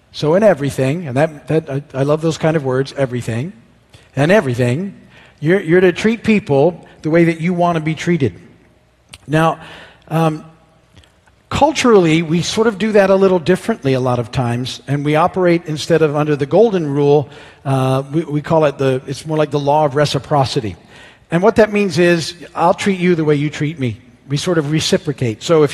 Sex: male